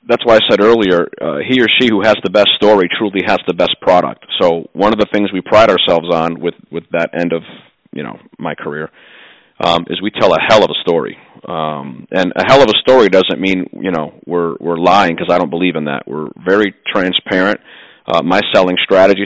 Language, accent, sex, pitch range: English, American, male, 85-105 Hz